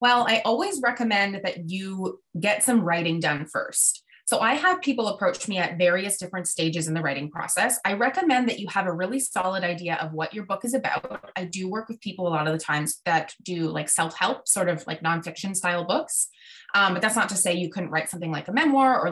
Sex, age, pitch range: female, 20-39, 170-230 Hz